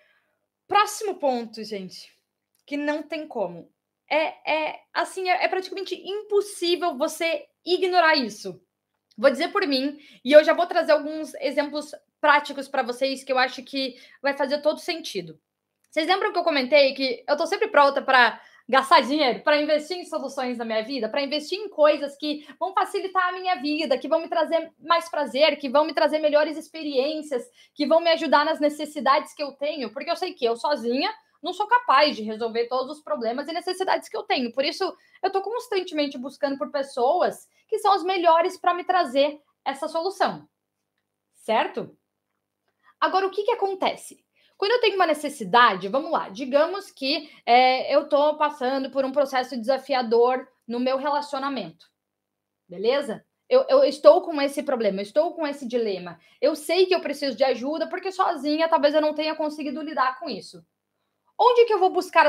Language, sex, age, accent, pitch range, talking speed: Portuguese, female, 20-39, Brazilian, 270-345 Hz, 175 wpm